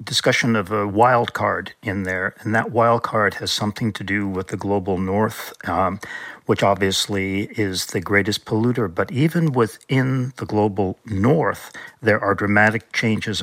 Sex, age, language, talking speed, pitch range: male, 50-69, English, 160 wpm, 100-120 Hz